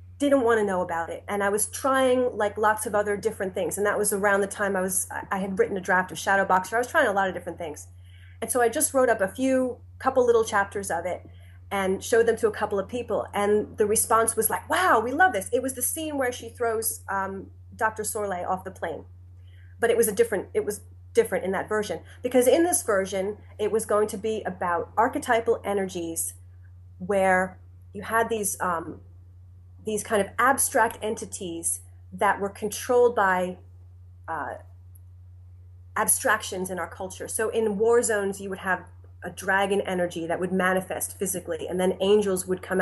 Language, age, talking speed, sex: English, 30-49, 200 wpm, female